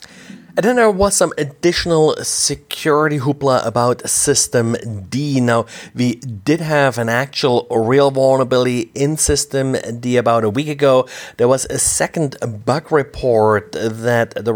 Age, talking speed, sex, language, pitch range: 30-49, 140 wpm, male, English, 115-145 Hz